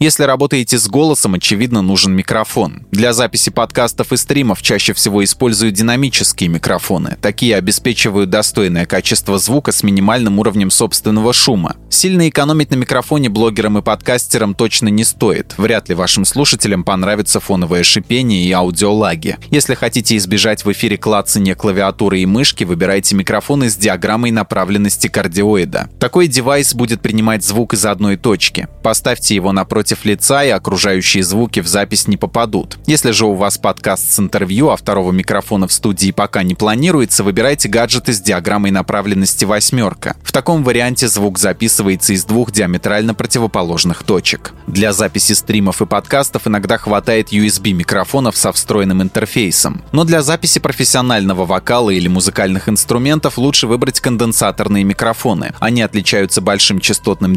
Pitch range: 100-120 Hz